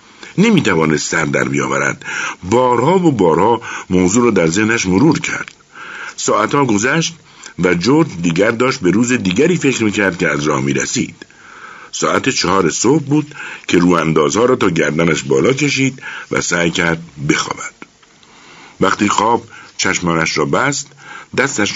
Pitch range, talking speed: 80-125 Hz, 140 wpm